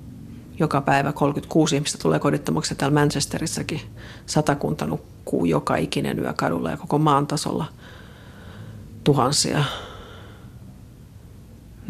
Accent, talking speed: native, 100 wpm